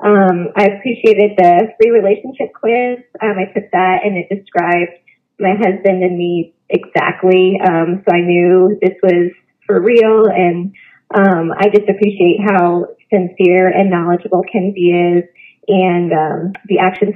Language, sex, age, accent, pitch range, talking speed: English, female, 20-39, American, 190-220 Hz, 145 wpm